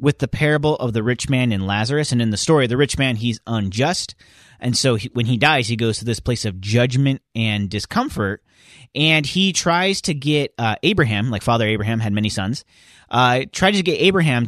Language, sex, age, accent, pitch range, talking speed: English, male, 30-49, American, 110-150 Hz, 205 wpm